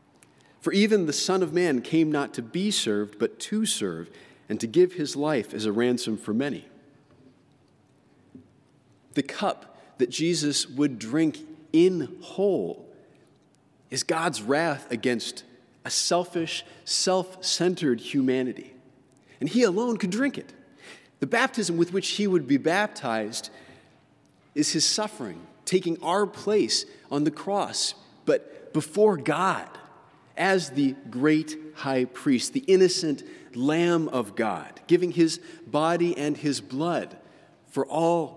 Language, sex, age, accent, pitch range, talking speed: English, male, 40-59, American, 130-185 Hz, 130 wpm